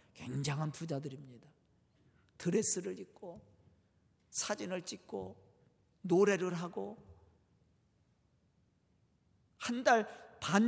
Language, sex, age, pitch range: Korean, male, 50-69, 140-215 Hz